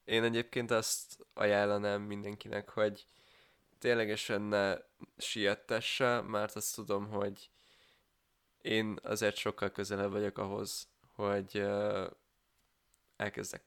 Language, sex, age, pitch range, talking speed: Hungarian, male, 20-39, 100-110 Hz, 90 wpm